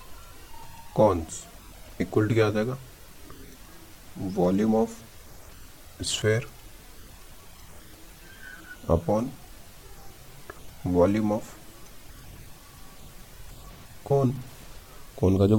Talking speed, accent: 60 wpm, native